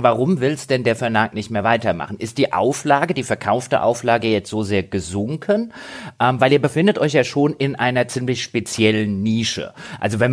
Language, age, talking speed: German, 30-49, 190 wpm